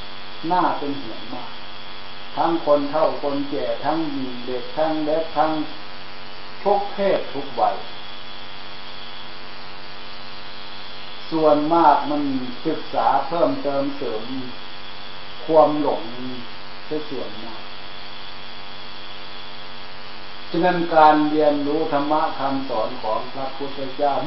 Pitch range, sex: 90-145 Hz, male